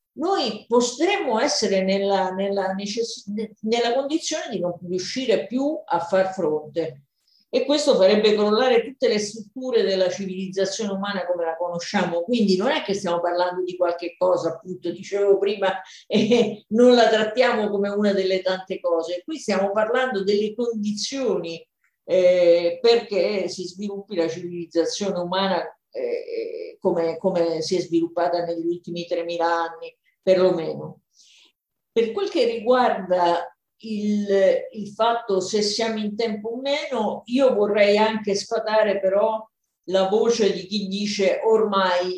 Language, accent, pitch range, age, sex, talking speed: Italian, native, 180-235 Hz, 50-69, female, 140 wpm